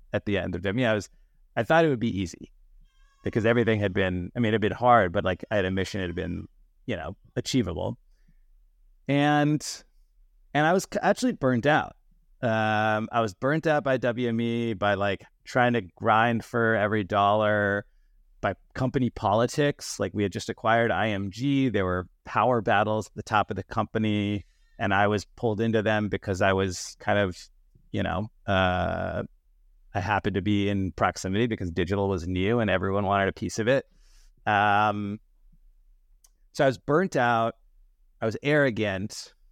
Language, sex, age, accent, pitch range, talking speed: English, male, 30-49, American, 95-120 Hz, 180 wpm